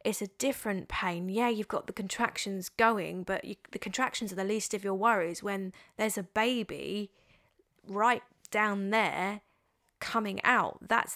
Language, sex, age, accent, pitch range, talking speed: English, female, 20-39, British, 190-225 Hz, 160 wpm